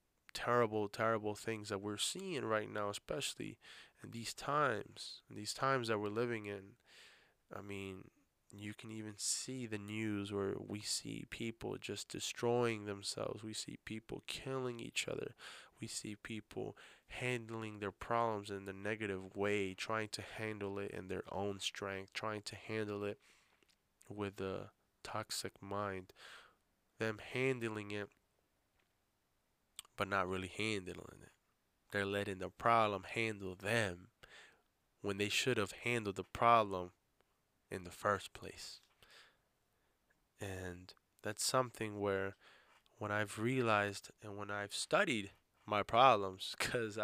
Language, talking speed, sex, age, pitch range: English, 135 wpm, male, 20-39, 100-115 Hz